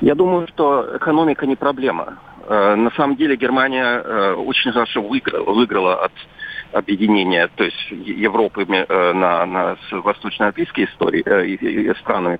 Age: 40-59